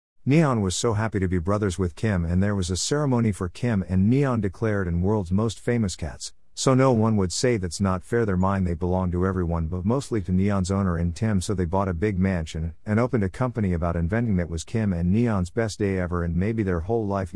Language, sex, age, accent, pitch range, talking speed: Dutch, male, 50-69, American, 85-115 Hz, 240 wpm